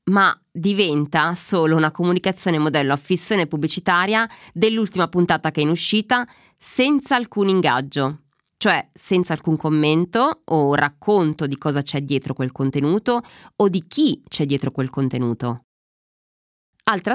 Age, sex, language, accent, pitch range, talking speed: 20-39, female, Italian, native, 135-185 Hz, 135 wpm